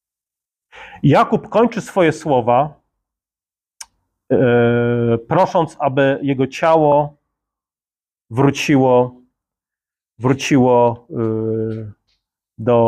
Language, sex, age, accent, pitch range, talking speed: Polish, male, 30-49, native, 120-150 Hz, 50 wpm